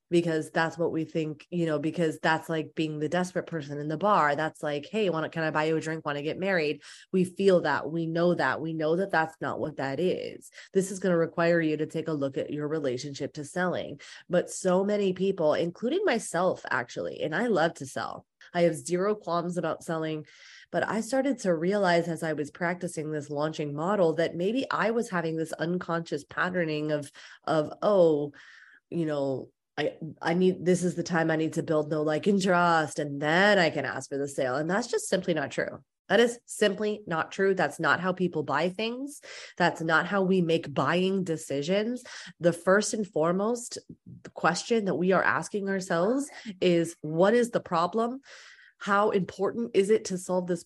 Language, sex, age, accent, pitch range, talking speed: English, female, 20-39, American, 155-195 Hz, 205 wpm